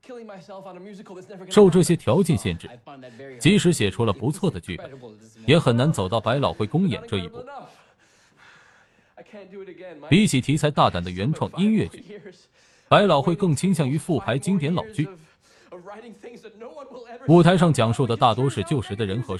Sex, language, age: male, Chinese, 20-39